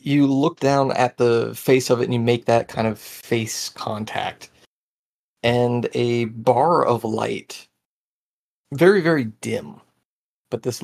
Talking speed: 145 wpm